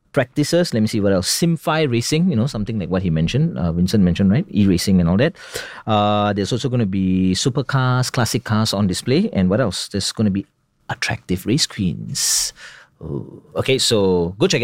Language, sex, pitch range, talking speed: English, male, 95-140 Hz, 195 wpm